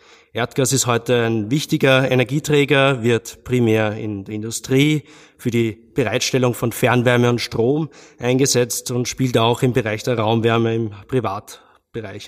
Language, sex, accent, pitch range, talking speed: German, male, German, 115-135 Hz, 135 wpm